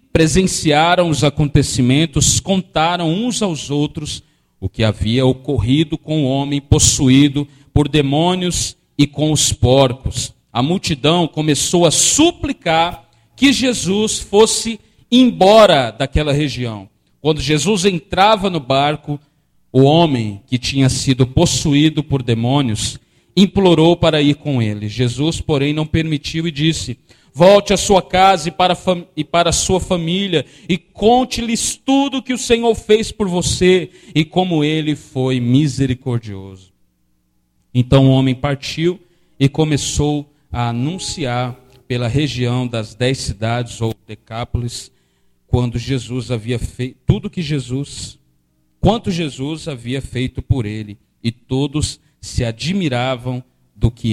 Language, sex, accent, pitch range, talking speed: Portuguese, male, Brazilian, 125-170 Hz, 130 wpm